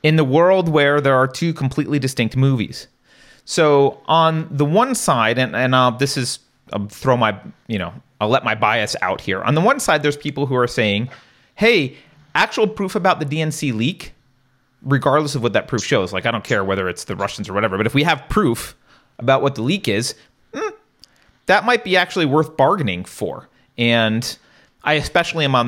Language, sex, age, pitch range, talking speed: English, male, 30-49, 110-150 Hz, 200 wpm